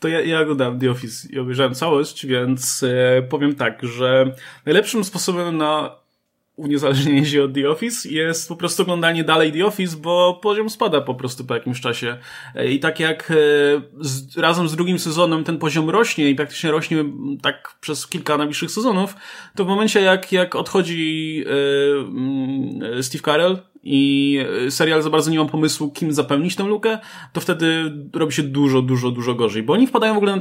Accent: native